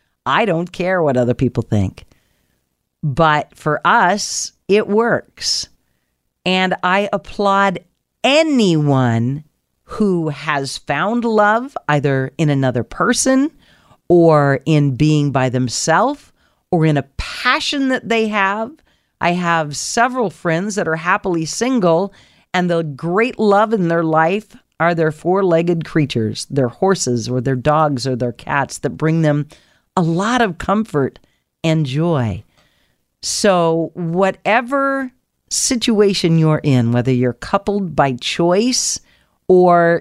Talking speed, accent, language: 125 wpm, American, English